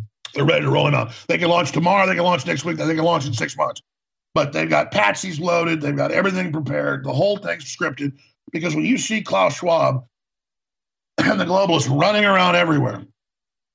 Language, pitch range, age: English, 135-190 Hz, 50-69